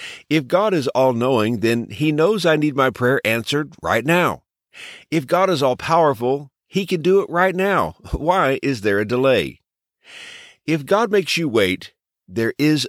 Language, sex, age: English, male, 50-69